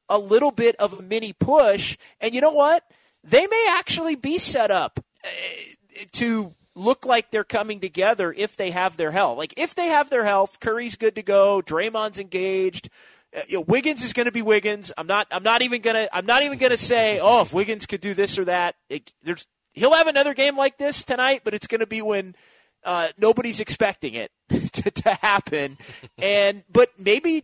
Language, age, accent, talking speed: English, 30-49, American, 210 wpm